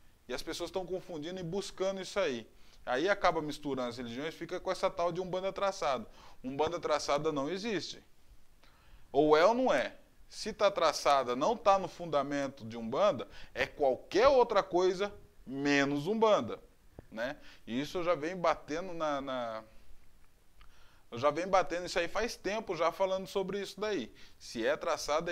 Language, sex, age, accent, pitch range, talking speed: Portuguese, male, 20-39, Brazilian, 140-185 Hz, 160 wpm